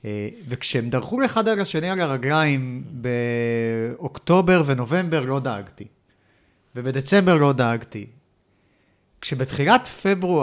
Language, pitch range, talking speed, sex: Hebrew, 130-175 Hz, 100 wpm, male